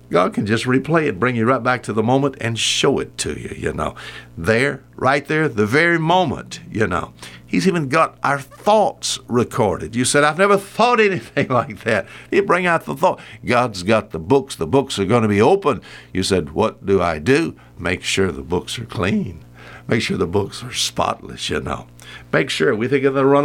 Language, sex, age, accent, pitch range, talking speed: English, male, 60-79, American, 95-140 Hz, 215 wpm